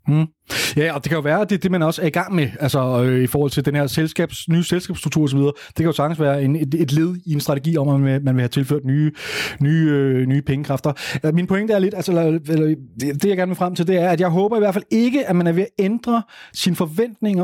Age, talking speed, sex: 30-49, 270 wpm, male